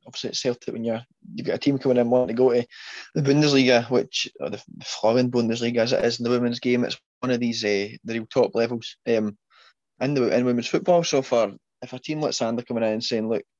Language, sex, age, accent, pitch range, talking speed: English, male, 20-39, British, 115-130 Hz, 245 wpm